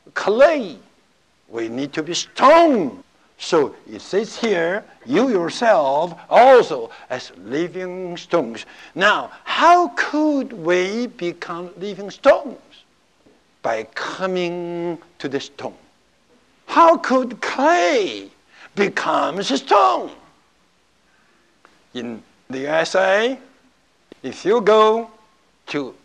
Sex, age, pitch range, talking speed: male, 60-79, 165-245 Hz, 90 wpm